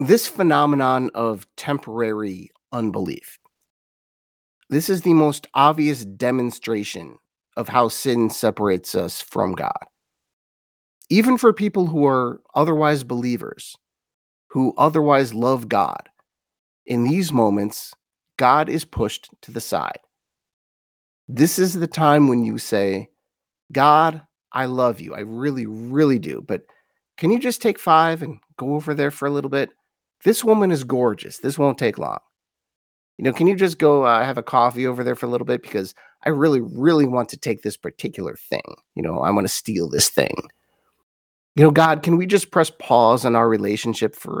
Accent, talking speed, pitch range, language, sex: American, 165 wpm, 115-160 Hz, English, male